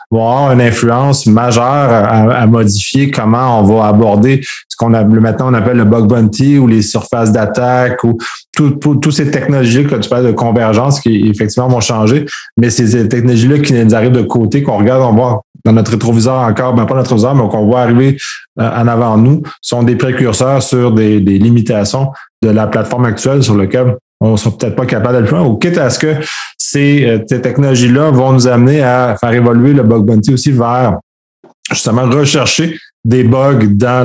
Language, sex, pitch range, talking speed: French, male, 110-135 Hz, 205 wpm